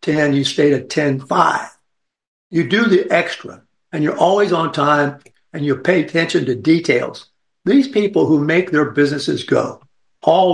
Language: English